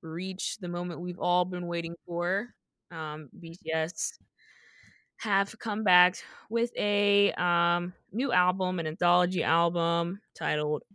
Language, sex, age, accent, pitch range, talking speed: English, female, 20-39, American, 160-215 Hz, 120 wpm